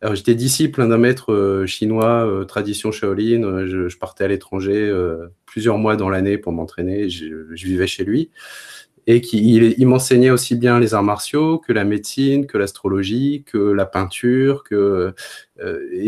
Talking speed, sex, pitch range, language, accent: 170 wpm, male, 105-135 Hz, French, French